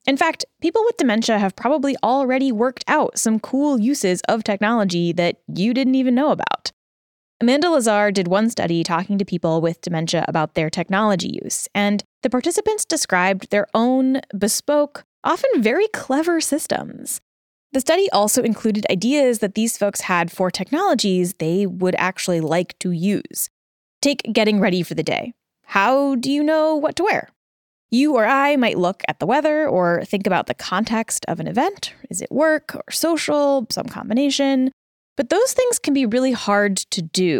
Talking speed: 175 wpm